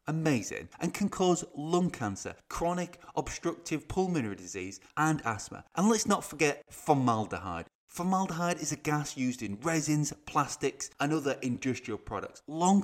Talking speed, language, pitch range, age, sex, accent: 140 wpm, English, 110-160 Hz, 30-49, male, British